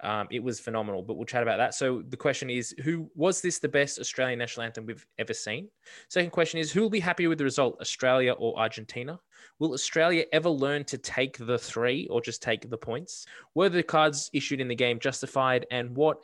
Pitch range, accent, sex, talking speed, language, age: 115-140 Hz, Australian, male, 220 wpm, English, 20-39